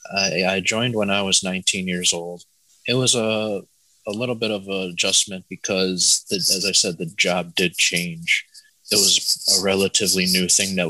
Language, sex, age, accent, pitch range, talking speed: English, male, 20-39, American, 85-95 Hz, 180 wpm